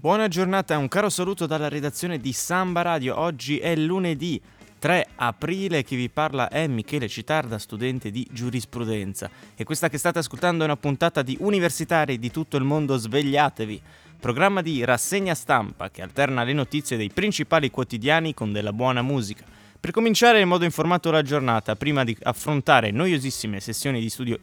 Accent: native